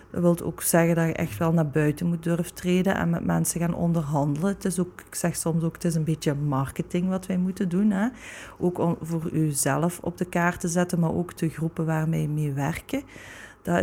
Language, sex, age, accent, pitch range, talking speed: Dutch, female, 30-49, Dutch, 165-180 Hz, 230 wpm